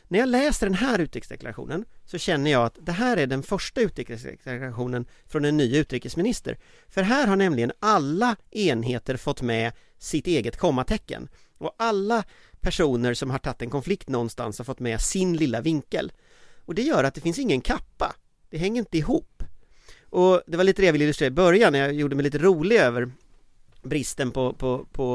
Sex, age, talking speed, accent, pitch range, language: male, 40-59, 180 wpm, native, 130-190 Hz, Swedish